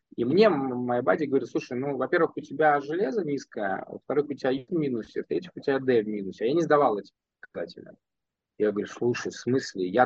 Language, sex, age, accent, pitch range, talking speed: Russian, male, 20-39, native, 115-145 Hz, 220 wpm